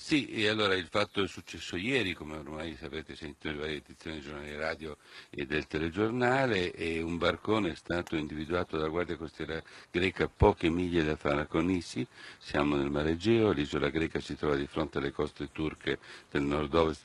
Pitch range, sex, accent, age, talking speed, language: 75-95 Hz, male, native, 60-79, 175 wpm, Italian